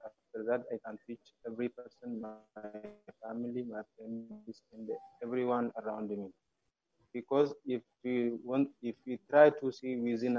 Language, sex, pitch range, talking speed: English, male, 115-130 Hz, 145 wpm